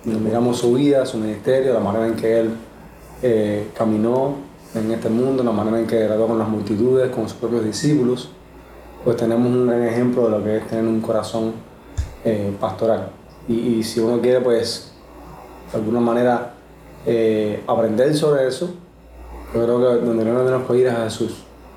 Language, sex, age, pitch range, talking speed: Spanish, male, 20-39, 110-125 Hz, 175 wpm